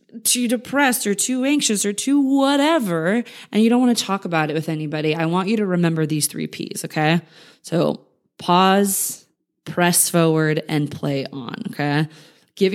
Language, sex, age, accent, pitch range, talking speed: English, female, 20-39, American, 155-200 Hz, 170 wpm